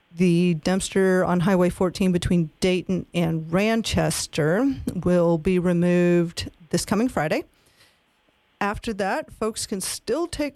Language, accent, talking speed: English, American, 120 wpm